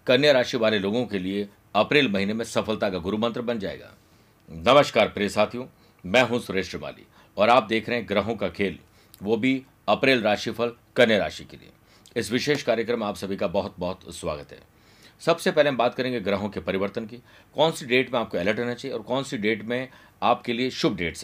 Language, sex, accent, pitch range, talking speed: Hindi, male, native, 110-135 Hz, 210 wpm